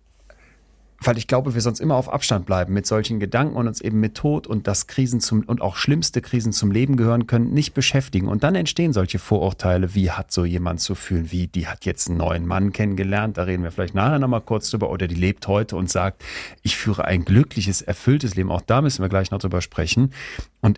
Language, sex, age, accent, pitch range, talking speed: German, male, 40-59, German, 95-125 Hz, 230 wpm